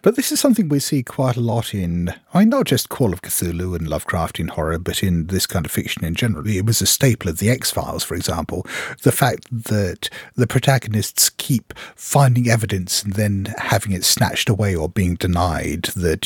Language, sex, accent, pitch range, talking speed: English, male, British, 100-135 Hz, 205 wpm